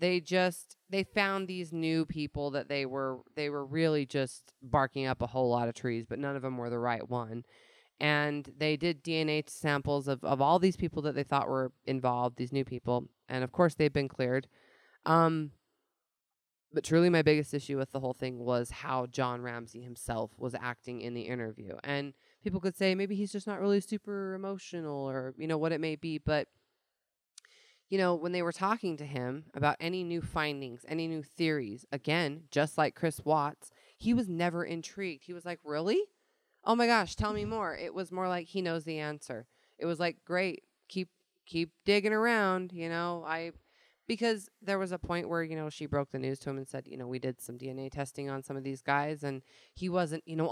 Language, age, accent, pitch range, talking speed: English, 20-39, American, 135-175 Hz, 210 wpm